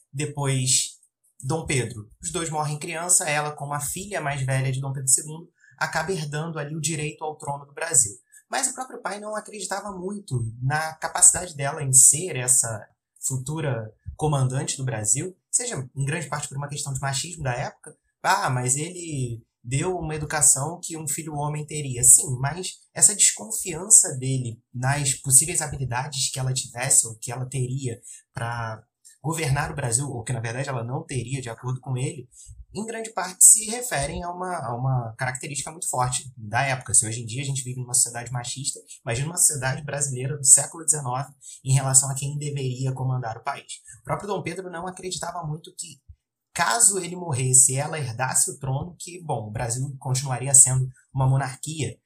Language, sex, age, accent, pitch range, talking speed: Portuguese, male, 20-39, Brazilian, 130-160 Hz, 180 wpm